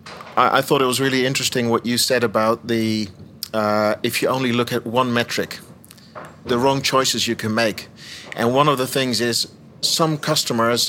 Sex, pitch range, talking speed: male, 115-135 Hz, 180 wpm